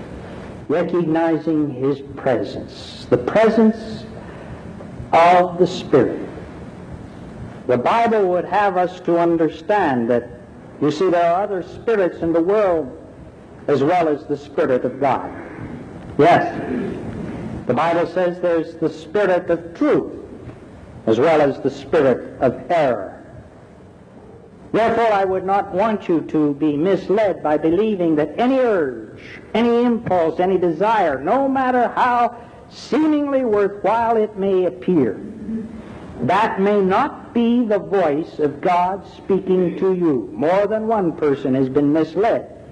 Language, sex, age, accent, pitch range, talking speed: English, male, 60-79, American, 155-210 Hz, 130 wpm